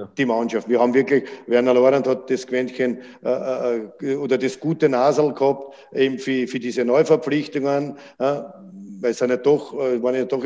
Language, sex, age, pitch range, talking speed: German, male, 50-69, 125-140 Hz, 170 wpm